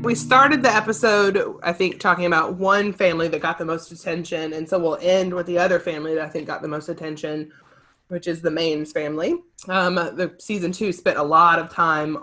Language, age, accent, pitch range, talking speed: English, 20-39, American, 155-190 Hz, 215 wpm